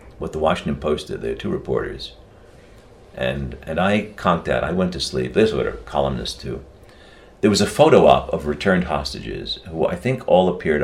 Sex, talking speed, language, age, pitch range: male, 200 wpm, English, 60-79, 70-115 Hz